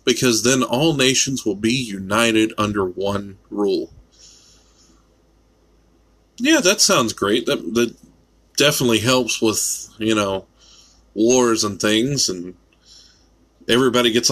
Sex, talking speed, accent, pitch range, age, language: male, 115 wpm, American, 85-120 Hz, 20-39, English